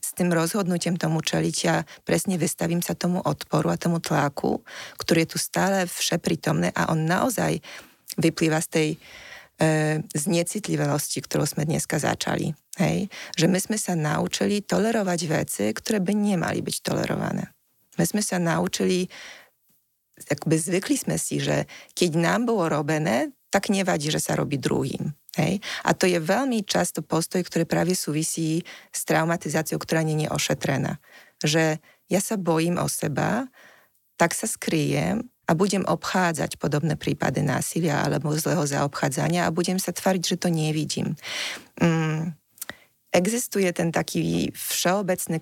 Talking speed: 140 wpm